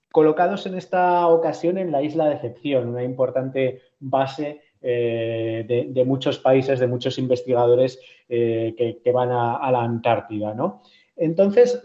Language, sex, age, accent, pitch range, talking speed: Spanish, male, 30-49, Spanish, 125-160 Hz, 145 wpm